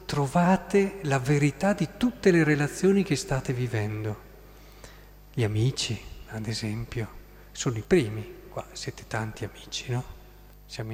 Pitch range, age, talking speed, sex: 120-150 Hz, 50-69, 125 wpm, male